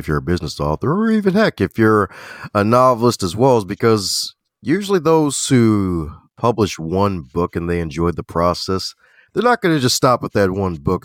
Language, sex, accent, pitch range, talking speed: English, male, American, 85-110 Hz, 200 wpm